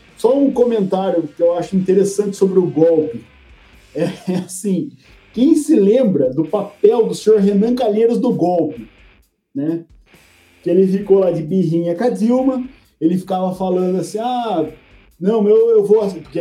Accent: Brazilian